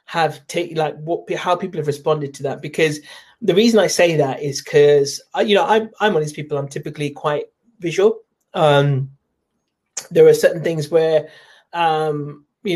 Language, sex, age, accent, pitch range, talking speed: English, male, 30-49, British, 150-185 Hz, 180 wpm